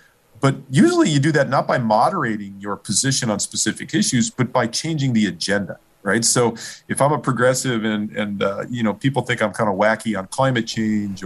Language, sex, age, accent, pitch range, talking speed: English, male, 40-59, American, 105-145 Hz, 205 wpm